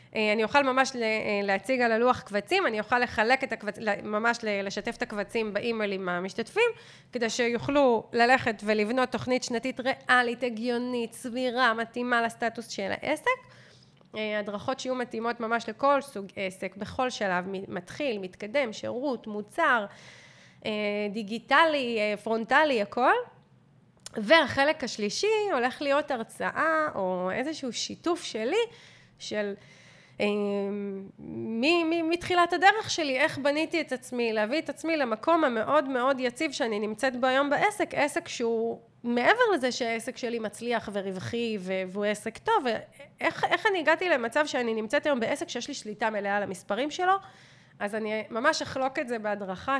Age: 20-39